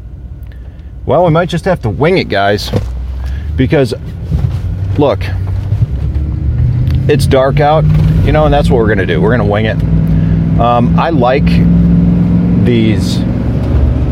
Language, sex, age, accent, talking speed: English, male, 40-59, American, 135 wpm